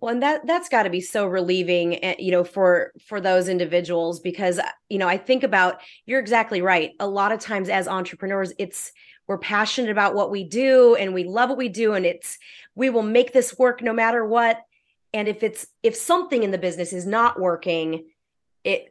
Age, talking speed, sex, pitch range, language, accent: 30-49, 205 wpm, female, 180-240 Hz, English, American